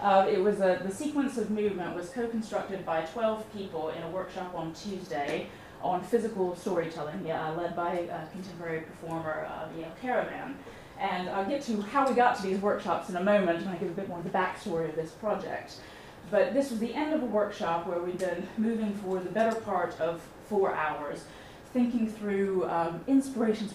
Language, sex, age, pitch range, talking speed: English, female, 30-49, 165-205 Hz, 200 wpm